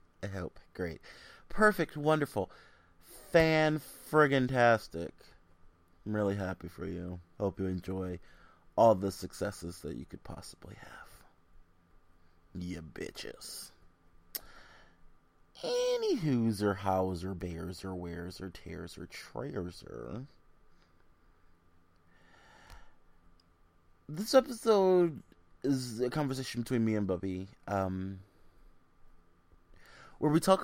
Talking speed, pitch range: 100 wpm, 85-105 Hz